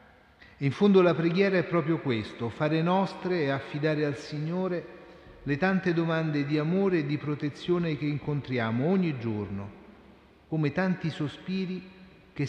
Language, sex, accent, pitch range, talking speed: Italian, male, native, 120-165 Hz, 140 wpm